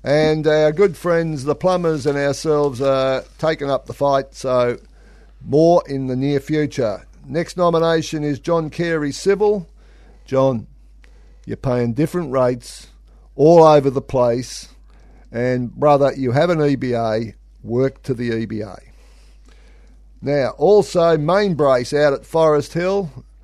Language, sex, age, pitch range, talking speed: English, male, 50-69, 120-160 Hz, 135 wpm